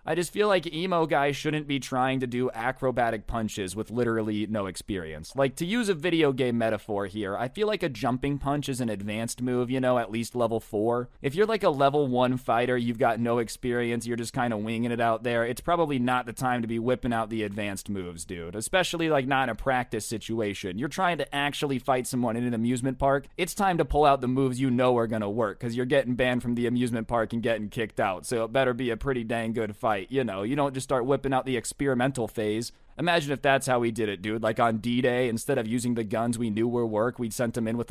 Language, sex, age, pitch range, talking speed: English, male, 20-39, 115-135 Hz, 250 wpm